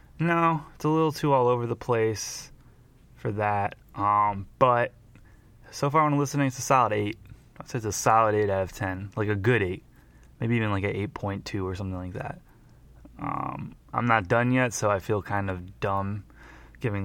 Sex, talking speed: male, 195 wpm